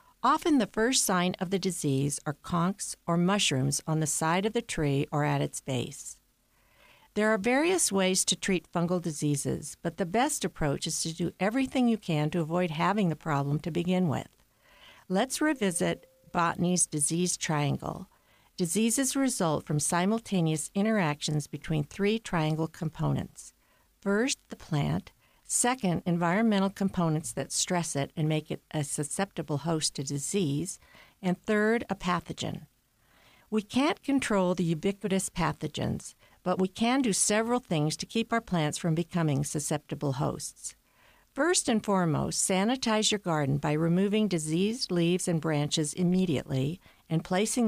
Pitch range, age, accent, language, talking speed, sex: 155-200 Hz, 50-69, American, English, 145 wpm, female